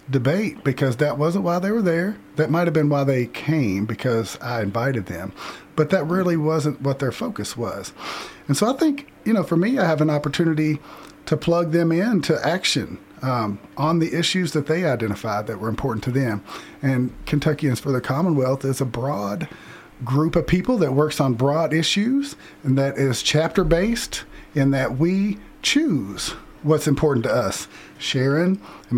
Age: 40-59